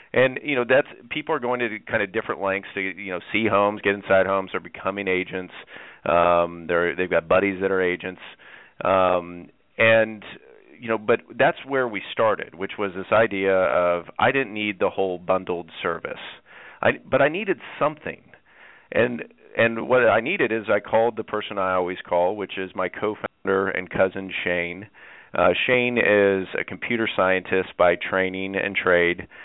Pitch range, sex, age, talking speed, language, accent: 90-105 Hz, male, 40-59, 180 wpm, English, American